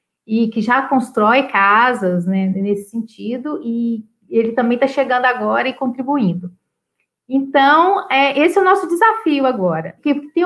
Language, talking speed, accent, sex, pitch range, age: Portuguese, 150 wpm, Brazilian, female, 220-305 Hz, 40-59